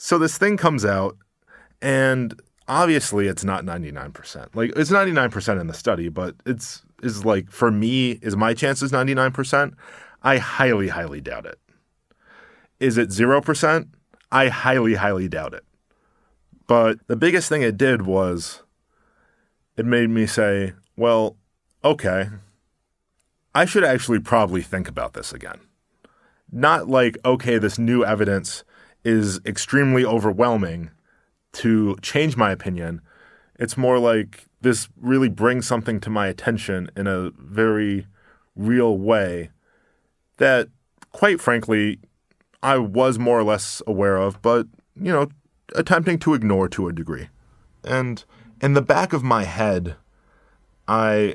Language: English